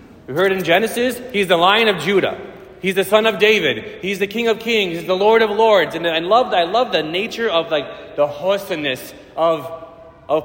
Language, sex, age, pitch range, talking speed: English, male, 30-49, 165-225 Hz, 215 wpm